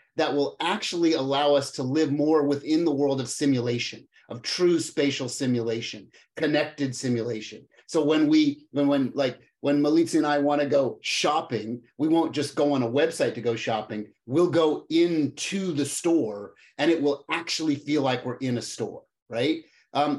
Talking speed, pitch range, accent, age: 175 wpm, 130-165 Hz, American, 30-49